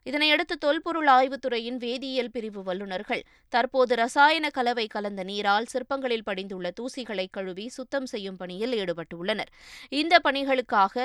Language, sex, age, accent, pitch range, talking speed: Tamil, female, 20-39, native, 205-265 Hz, 115 wpm